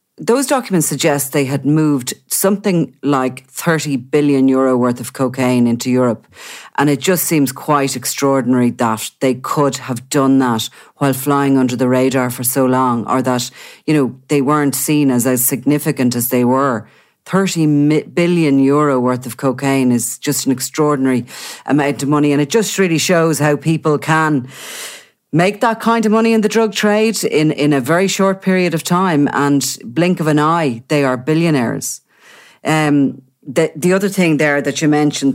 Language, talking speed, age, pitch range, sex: English, 180 wpm, 40-59, 135-160 Hz, female